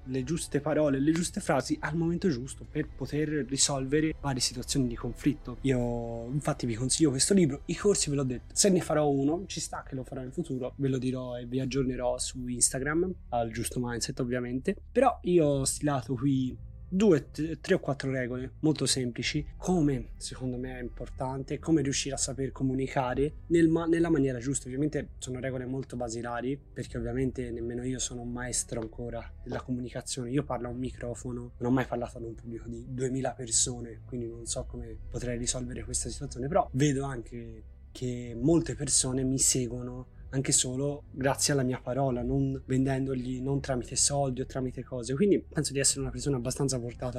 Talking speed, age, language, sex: 180 wpm, 20-39, Italian, male